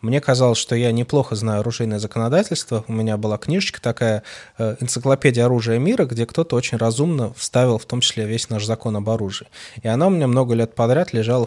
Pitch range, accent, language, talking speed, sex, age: 110-140 Hz, native, Russian, 195 wpm, male, 20-39